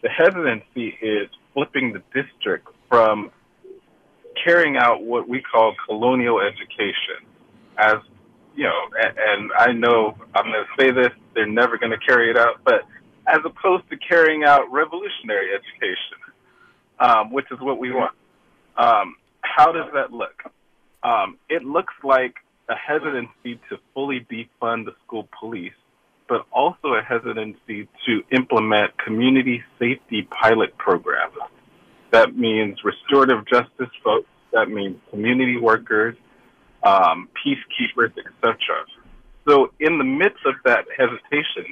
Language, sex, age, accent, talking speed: English, male, 30-49, American, 135 wpm